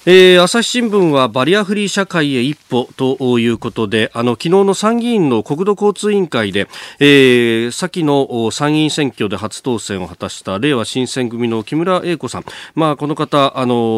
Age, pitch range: 40-59, 110-155 Hz